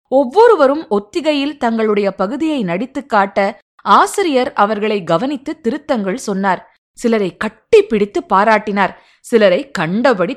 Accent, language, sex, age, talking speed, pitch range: native, Tamil, female, 20-39, 95 wpm, 195-255 Hz